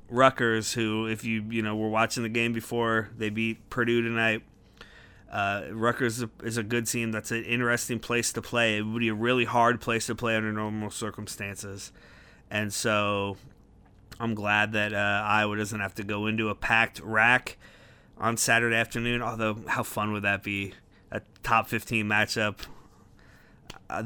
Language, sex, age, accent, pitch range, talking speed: English, male, 30-49, American, 105-120 Hz, 175 wpm